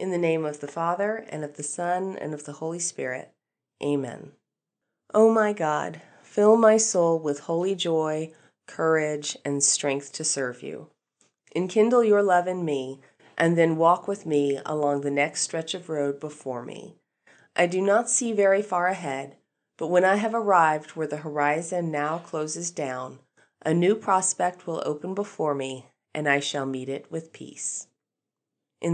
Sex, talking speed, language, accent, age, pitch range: female, 170 wpm, English, American, 30-49, 145-185 Hz